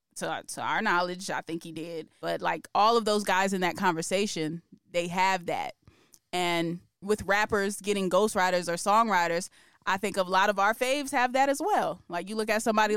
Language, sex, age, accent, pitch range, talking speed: English, female, 20-39, American, 175-215 Hz, 200 wpm